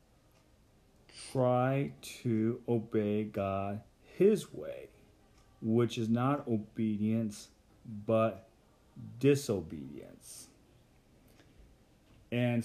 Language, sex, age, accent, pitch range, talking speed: English, male, 40-59, American, 105-135 Hz, 60 wpm